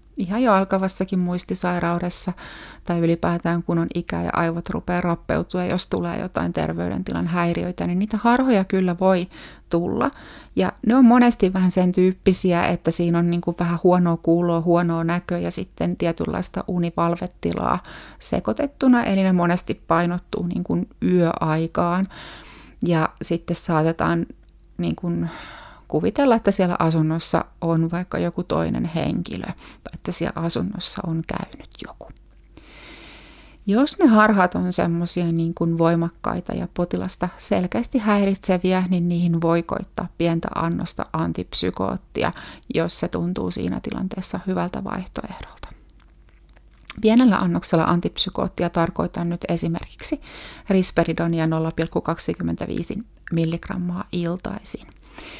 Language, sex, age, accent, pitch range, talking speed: Finnish, female, 30-49, native, 165-190 Hz, 115 wpm